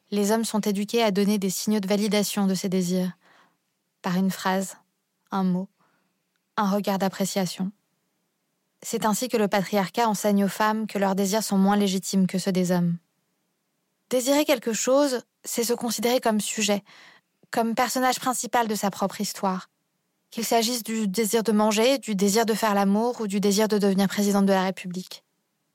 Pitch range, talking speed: 190-225 Hz, 170 wpm